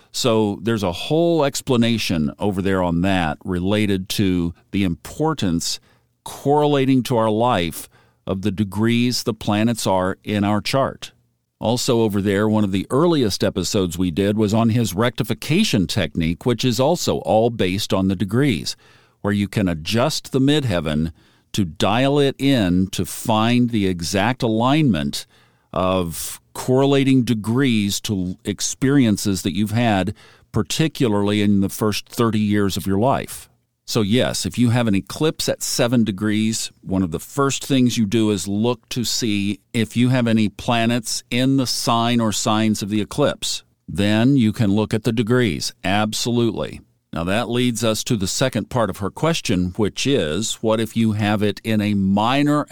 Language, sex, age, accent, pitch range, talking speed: English, male, 50-69, American, 100-120 Hz, 165 wpm